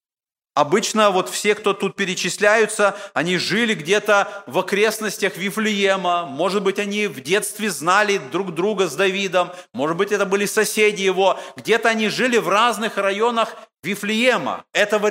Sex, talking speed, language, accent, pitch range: male, 145 wpm, Russian, native, 180-220 Hz